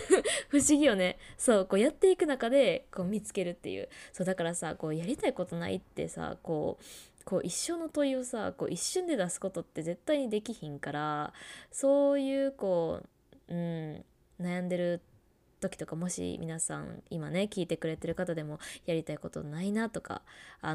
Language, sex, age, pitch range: Japanese, female, 20-39, 165-225 Hz